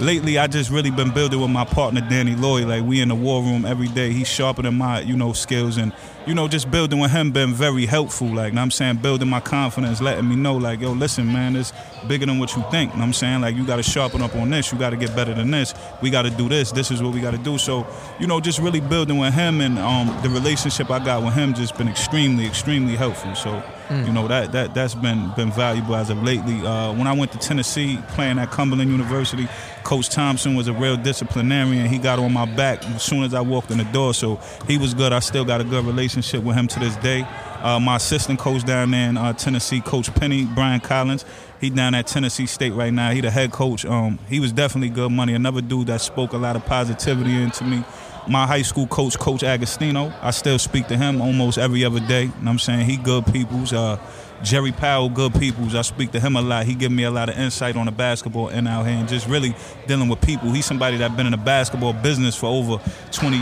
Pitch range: 120-135 Hz